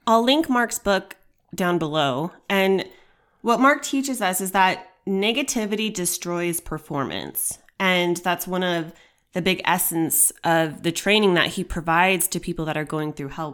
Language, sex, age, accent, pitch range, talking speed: English, female, 20-39, American, 155-190 Hz, 160 wpm